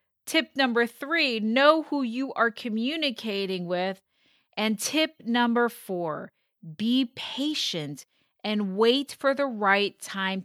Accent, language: American, English